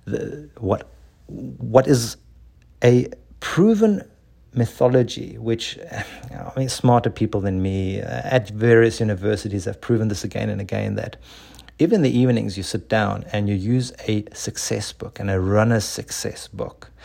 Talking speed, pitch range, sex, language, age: 155 wpm, 115-180 Hz, male, English, 50-69